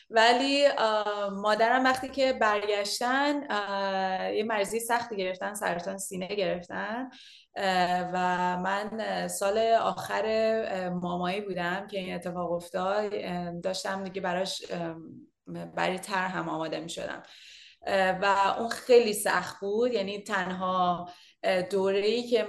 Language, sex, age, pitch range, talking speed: Persian, female, 30-49, 185-225 Hz, 110 wpm